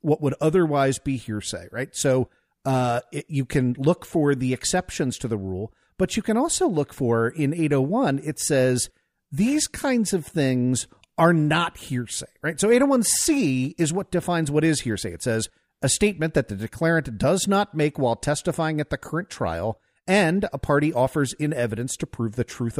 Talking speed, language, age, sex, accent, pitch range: 180 wpm, English, 50-69, male, American, 125-185 Hz